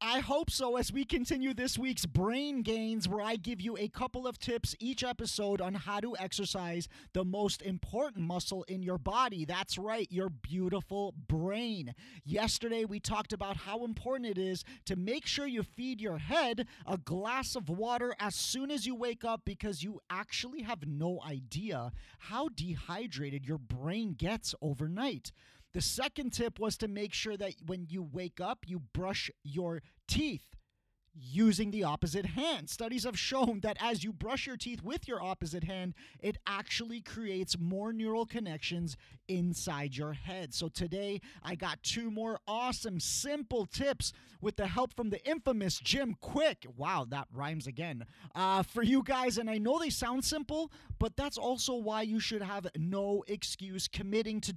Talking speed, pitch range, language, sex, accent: 175 wpm, 175-235 Hz, English, male, American